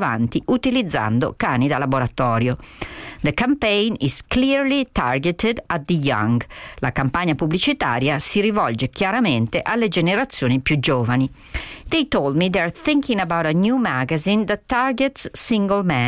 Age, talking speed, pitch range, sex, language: 50-69, 75 wpm, 135-215 Hz, female, Italian